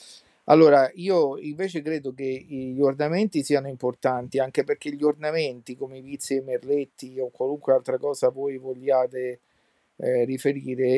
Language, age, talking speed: Italian, 50-69, 150 wpm